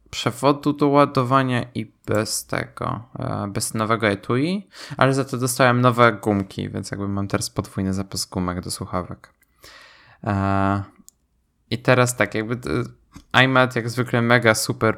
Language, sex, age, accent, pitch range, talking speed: Polish, male, 10-29, native, 105-125 Hz, 130 wpm